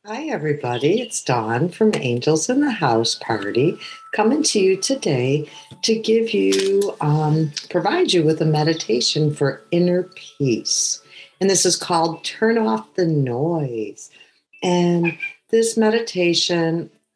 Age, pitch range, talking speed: 60-79, 140-180 Hz, 130 wpm